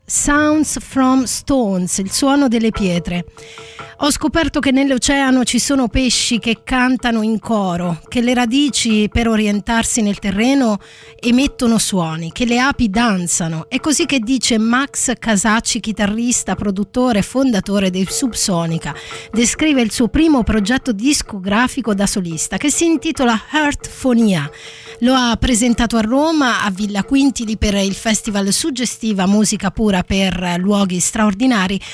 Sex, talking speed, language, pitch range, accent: female, 135 wpm, Italian, 205-260 Hz, native